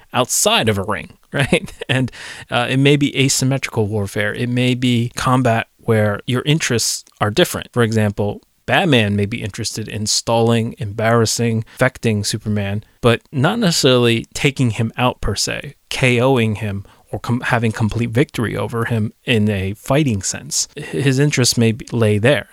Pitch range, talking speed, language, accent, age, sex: 110-130 Hz, 155 wpm, English, American, 30-49, male